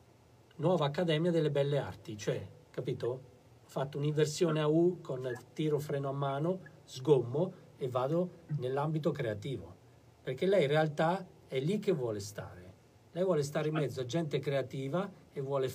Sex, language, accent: male, Italian, native